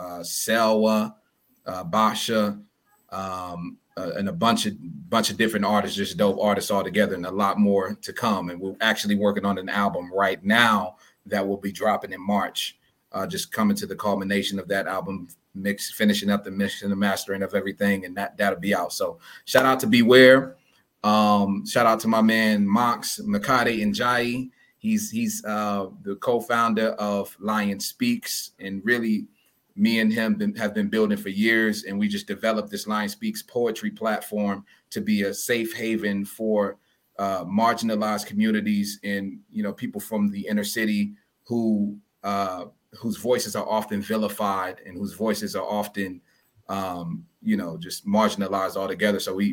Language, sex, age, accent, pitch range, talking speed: English, male, 30-49, American, 100-125 Hz, 175 wpm